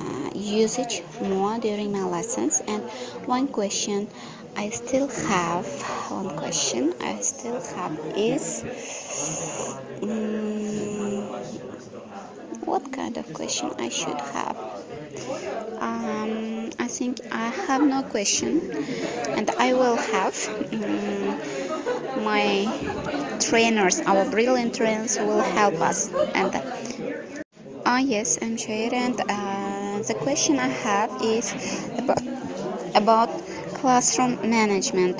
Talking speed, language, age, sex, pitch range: 105 wpm, English, 20-39, female, 205-250 Hz